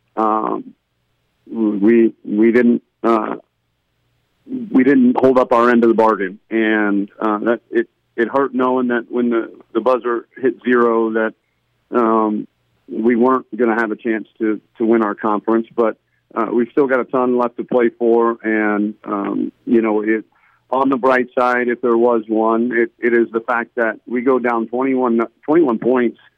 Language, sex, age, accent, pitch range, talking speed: English, male, 50-69, American, 115-130 Hz, 175 wpm